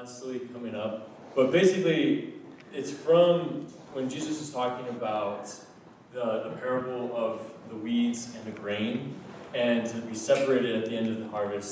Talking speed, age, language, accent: 155 wpm, 20-39, English, American